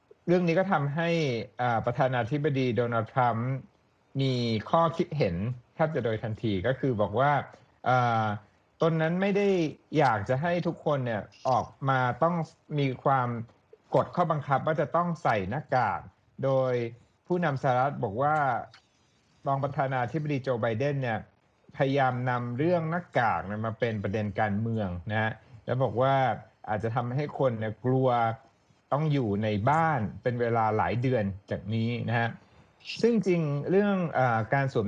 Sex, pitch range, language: male, 115-150 Hz, Thai